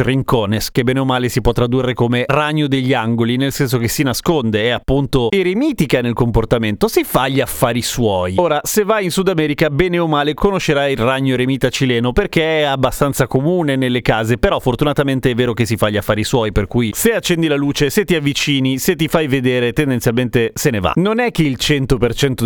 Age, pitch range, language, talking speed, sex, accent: 30-49, 120-175 Hz, Italian, 210 wpm, male, native